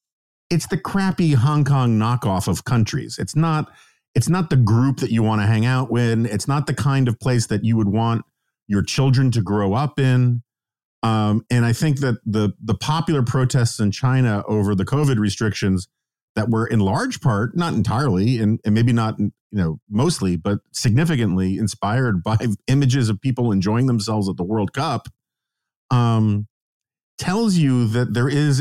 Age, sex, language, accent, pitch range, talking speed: 50-69, male, English, American, 100-130 Hz, 180 wpm